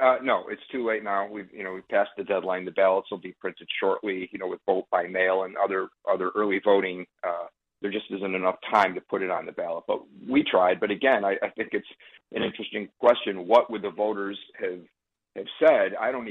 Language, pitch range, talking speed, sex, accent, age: English, 95-110 Hz, 230 wpm, male, American, 50-69